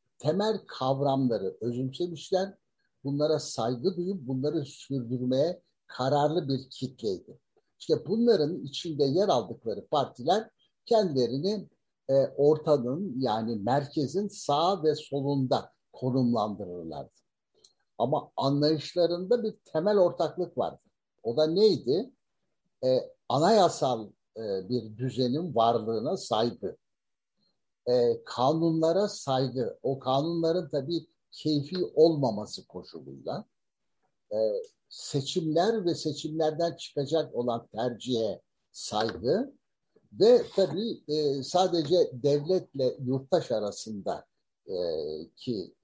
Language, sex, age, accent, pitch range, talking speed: Turkish, male, 60-79, native, 130-185 Hz, 80 wpm